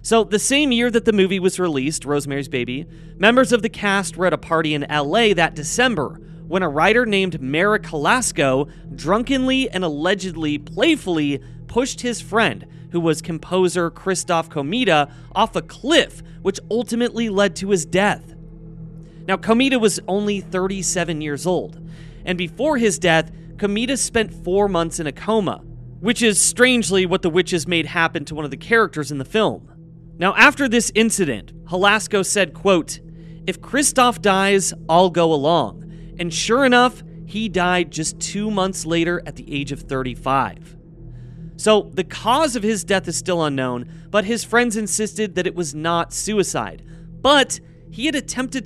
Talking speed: 165 wpm